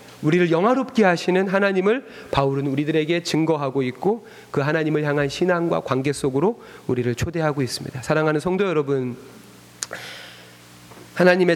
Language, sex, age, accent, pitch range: Korean, male, 30-49, native, 140-230 Hz